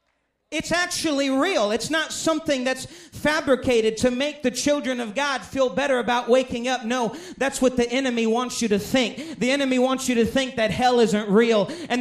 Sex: male